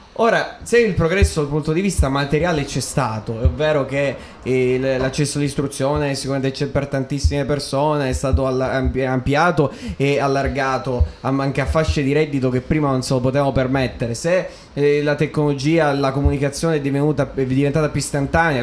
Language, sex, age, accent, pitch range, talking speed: Italian, male, 20-39, native, 135-165 Hz, 160 wpm